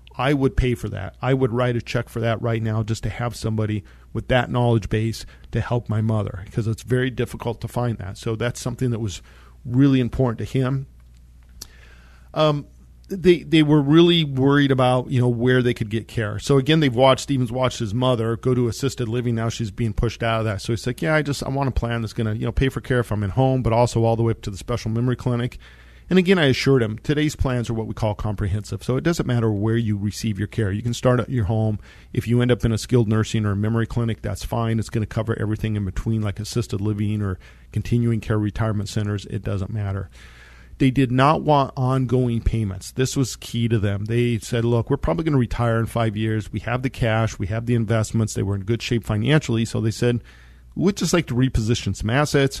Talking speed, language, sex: 240 wpm, English, male